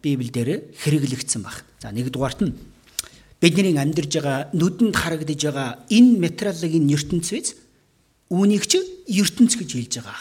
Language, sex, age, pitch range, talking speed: English, male, 40-59, 140-225 Hz, 145 wpm